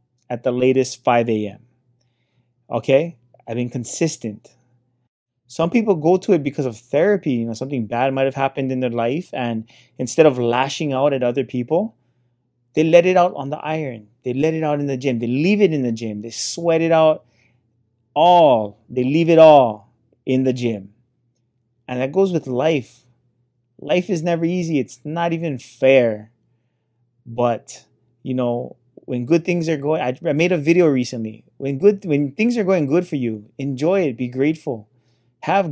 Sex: male